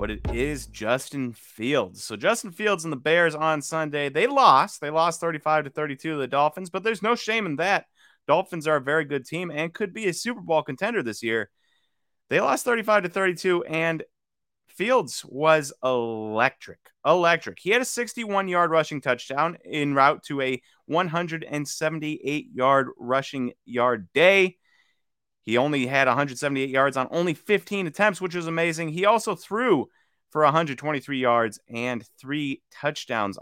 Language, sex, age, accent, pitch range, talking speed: English, male, 30-49, American, 130-170 Hz, 160 wpm